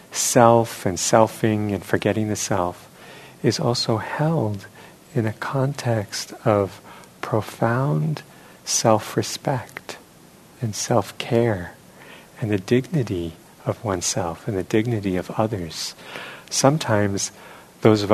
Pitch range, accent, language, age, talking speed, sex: 90-115 Hz, American, English, 50-69, 105 wpm, male